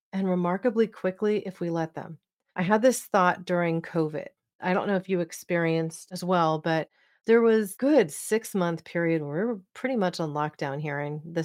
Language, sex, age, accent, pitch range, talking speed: English, female, 30-49, American, 165-200 Hz, 200 wpm